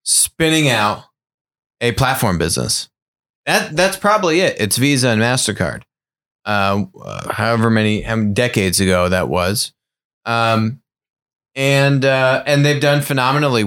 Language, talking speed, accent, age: English, 125 wpm, American, 20-39